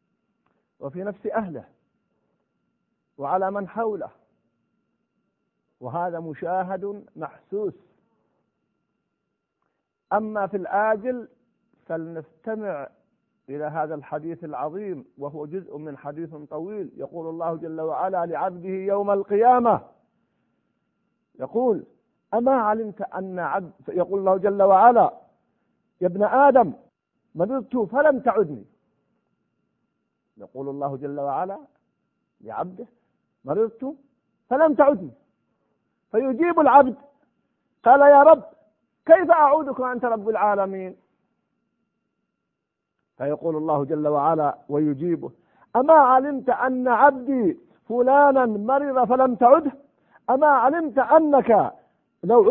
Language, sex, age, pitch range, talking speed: Arabic, male, 50-69, 175-260 Hz, 90 wpm